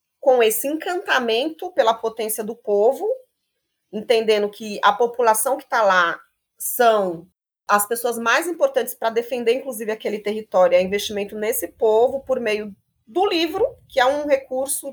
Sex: female